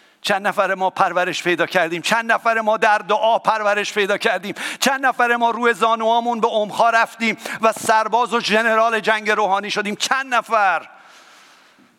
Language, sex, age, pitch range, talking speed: English, male, 50-69, 145-215 Hz, 155 wpm